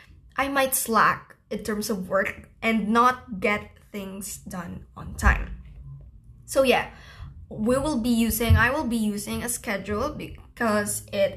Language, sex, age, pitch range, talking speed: English, female, 20-39, 210-240 Hz, 150 wpm